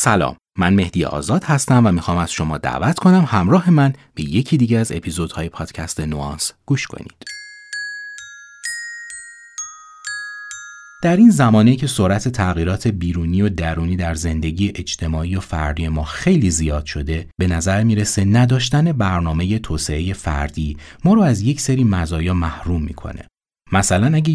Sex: male